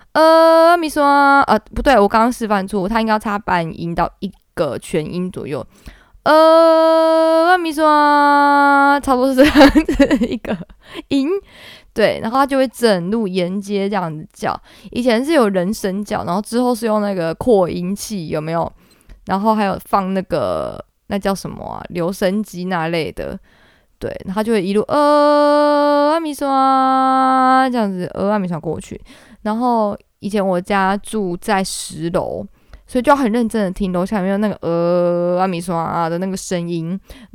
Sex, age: female, 20-39